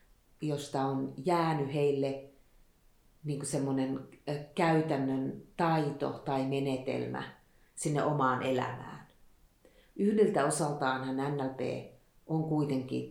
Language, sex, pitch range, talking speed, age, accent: Finnish, female, 130-145 Hz, 80 wpm, 40-59, native